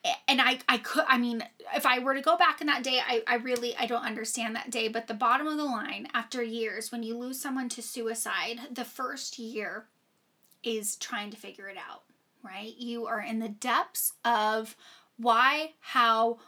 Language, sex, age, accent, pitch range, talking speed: English, female, 10-29, American, 230-265 Hz, 200 wpm